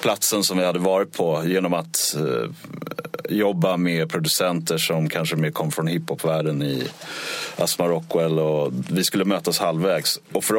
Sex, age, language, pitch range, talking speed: male, 30-49, Swedish, 80-95 Hz, 140 wpm